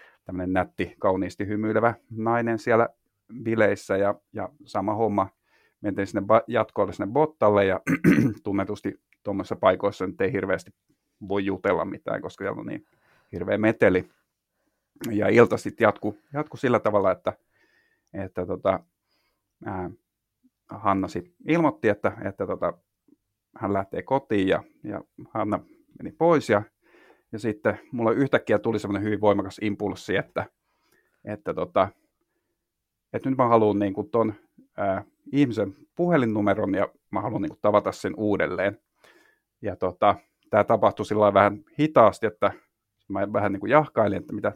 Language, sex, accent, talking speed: Finnish, male, native, 130 wpm